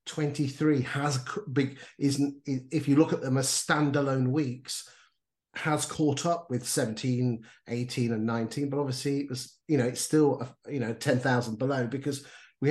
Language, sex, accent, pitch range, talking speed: English, male, British, 130-155 Hz, 165 wpm